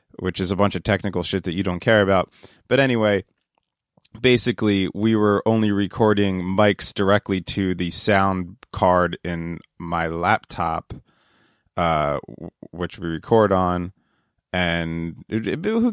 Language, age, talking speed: English, 20-39, 130 wpm